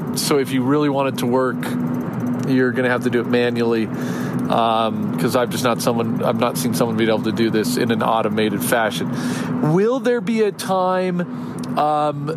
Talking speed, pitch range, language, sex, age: 200 wpm, 130-160 Hz, English, male, 40-59